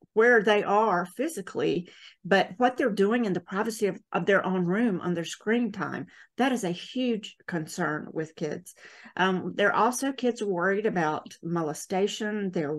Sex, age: female, 50-69